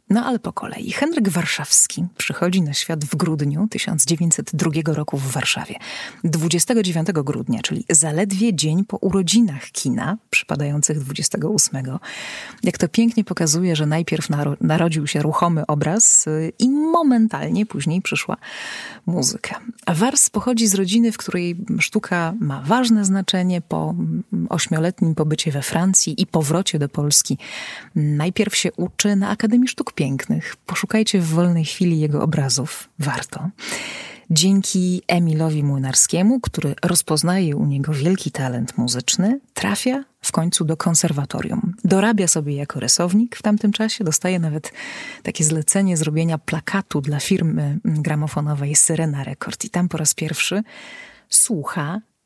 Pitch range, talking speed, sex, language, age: 155-205 Hz, 130 wpm, female, Polish, 30-49